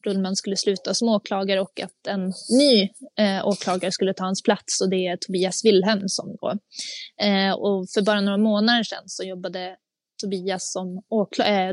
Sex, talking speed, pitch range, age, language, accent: female, 175 wpm, 185-210 Hz, 20-39, Swedish, native